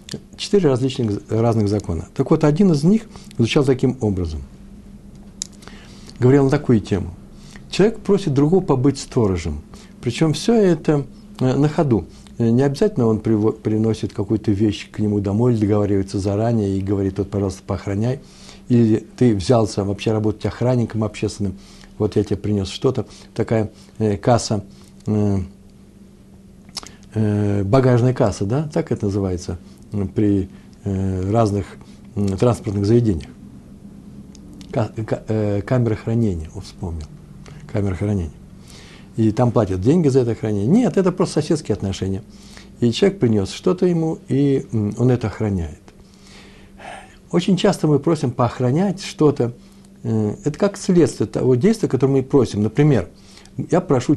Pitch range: 100-140 Hz